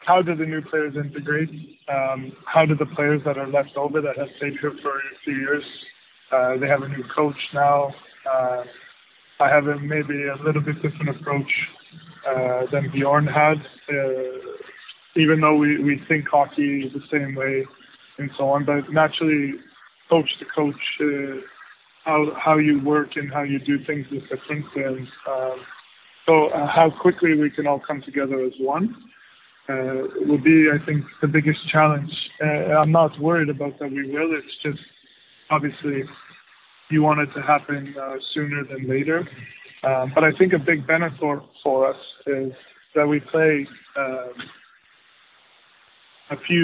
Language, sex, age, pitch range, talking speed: Swedish, male, 20-39, 135-155 Hz, 170 wpm